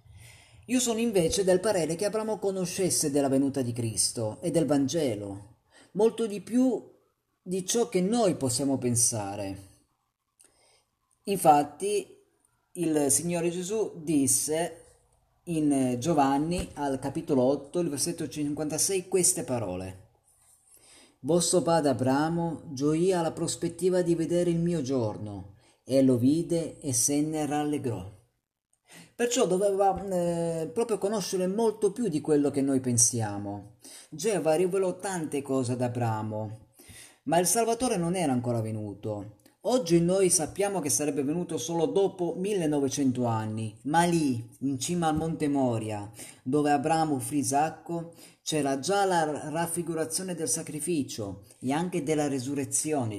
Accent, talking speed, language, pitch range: native, 125 wpm, Italian, 130-175 Hz